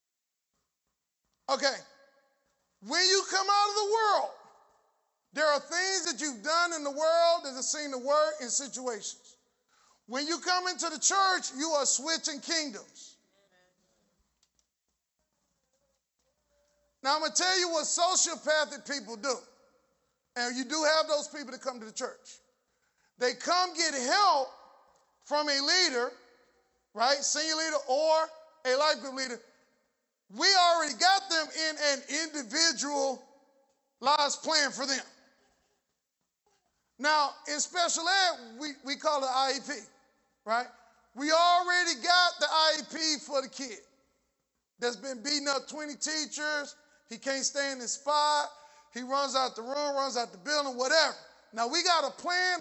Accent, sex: American, male